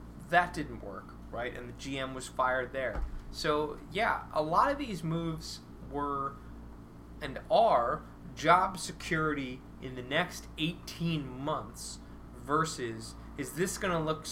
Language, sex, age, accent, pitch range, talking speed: English, male, 20-39, American, 100-165 Hz, 140 wpm